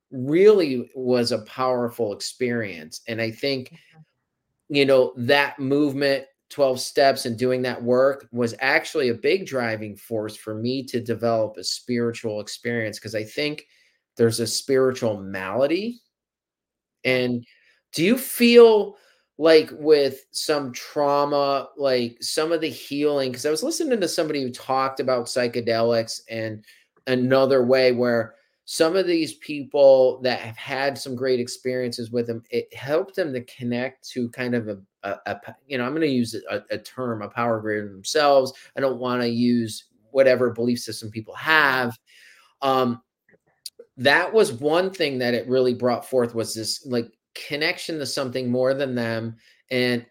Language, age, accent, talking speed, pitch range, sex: English, 30-49, American, 160 wpm, 115-140 Hz, male